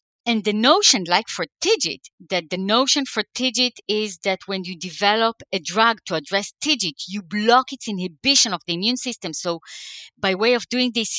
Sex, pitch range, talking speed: female, 195-265 Hz, 190 wpm